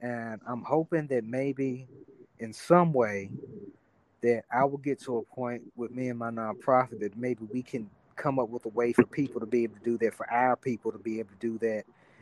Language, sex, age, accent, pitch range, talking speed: English, male, 40-59, American, 115-140 Hz, 225 wpm